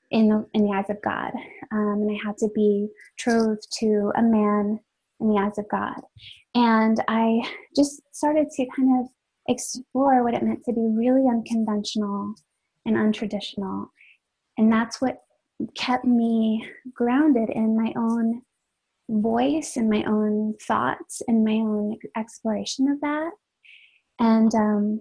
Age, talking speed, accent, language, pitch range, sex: 20-39, 145 wpm, American, English, 215-255 Hz, female